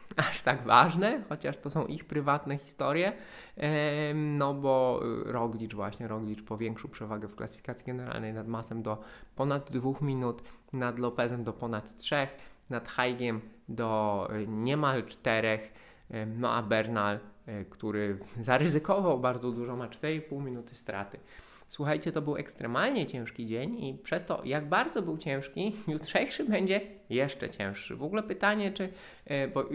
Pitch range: 110-140 Hz